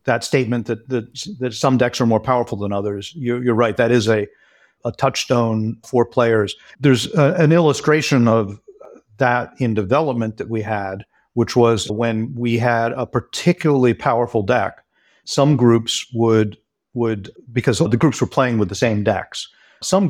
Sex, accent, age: male, American, 50-69